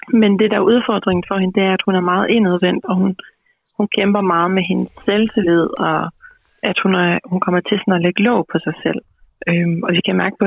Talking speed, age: 240 wpm, 30-49